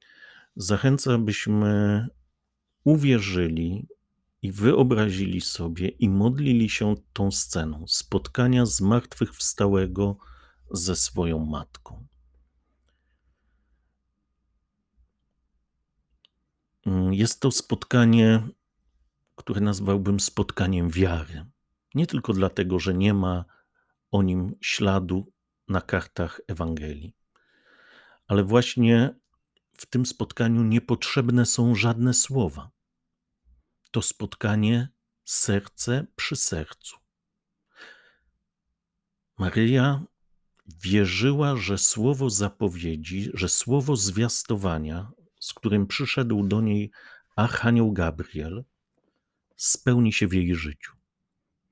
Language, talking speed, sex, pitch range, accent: Polish, 80 wpm, male, 90-120 Hz, native